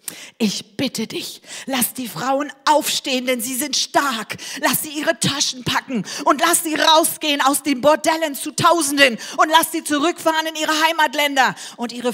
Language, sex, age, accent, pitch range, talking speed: German, female, 40-59, German, 195-295 Hz, 170 wpm